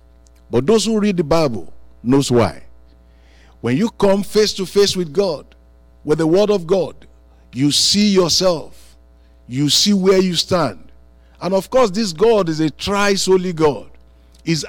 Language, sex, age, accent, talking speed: English, male, 50-69, Nigerian, 165 wpm